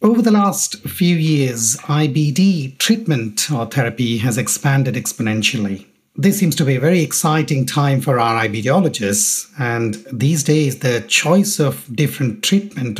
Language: English